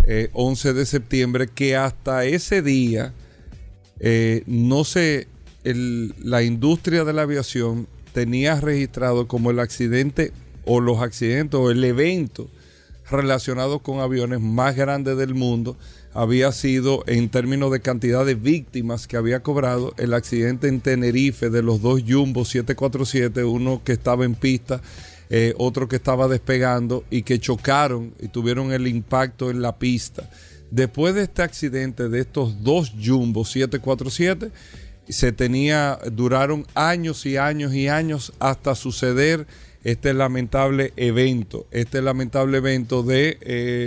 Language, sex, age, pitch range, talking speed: Spanish, male, 40-59, 120-135 Hz, 140 wpm